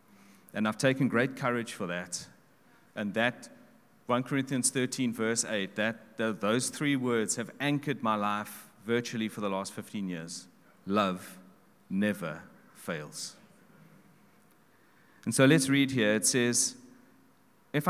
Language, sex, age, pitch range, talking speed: English, male, 40-59, 95-130 Hz, 135 wpm